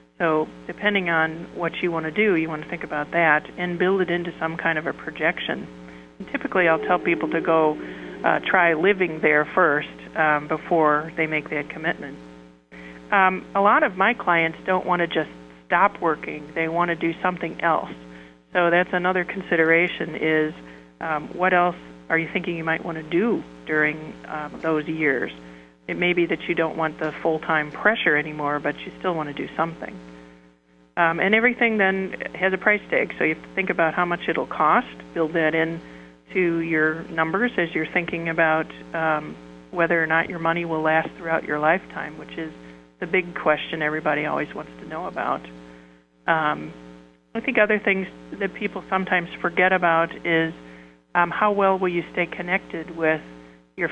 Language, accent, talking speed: English, American, 185 wpm